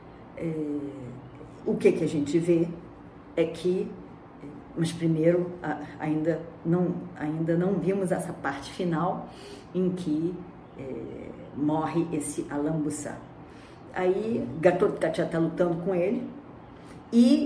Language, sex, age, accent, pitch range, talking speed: Portuguese, female, 50-69, Brazilian, 160-240 Hz, 115 wpm